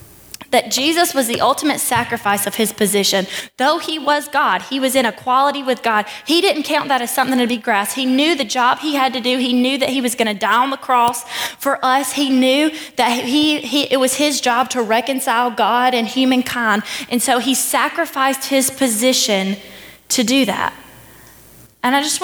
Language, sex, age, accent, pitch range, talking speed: English, female, 20-39, American, 230-290 Hz, 195 wpm